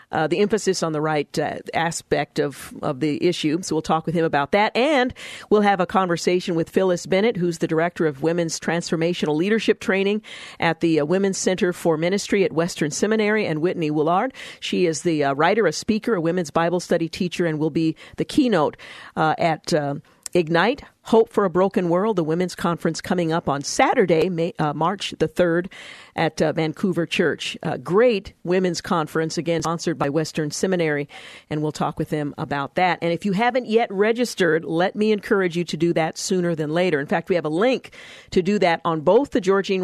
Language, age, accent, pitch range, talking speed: English, 50-69, American, 160-190 Hz, 205 wpm